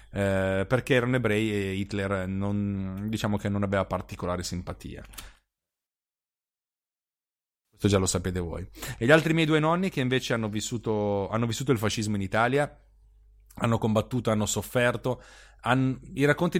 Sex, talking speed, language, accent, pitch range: male, 135 wpm, Italian, native, 100-130 Hz